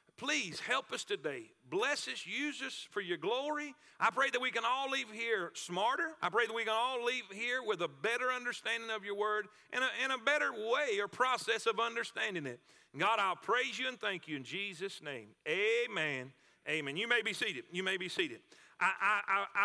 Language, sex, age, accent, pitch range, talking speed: English, male, 40-59, American, 200-265 Hz, 200 wpm